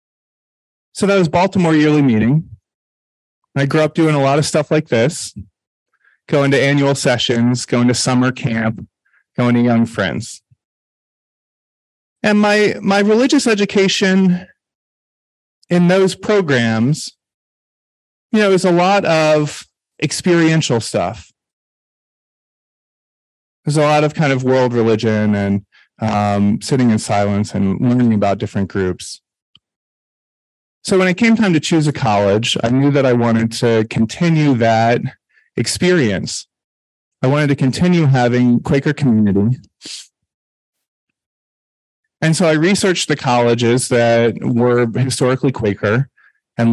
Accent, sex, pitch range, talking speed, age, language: American, male, 110-155 Hz, 125 wpm, 30-49, English